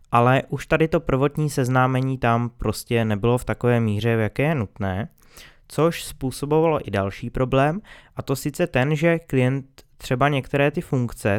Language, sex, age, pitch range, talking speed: Czech, male, 20-39, 120-145 Hz, 165 wpm